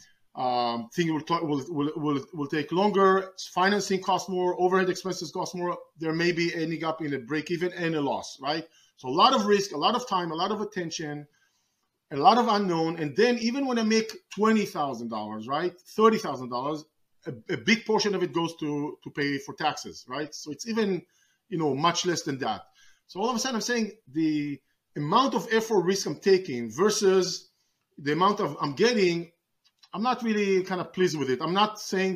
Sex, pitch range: male, 150-195 Hz